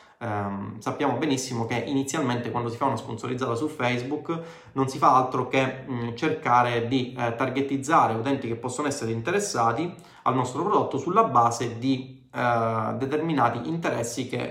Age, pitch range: 20-39, 115-150 Hz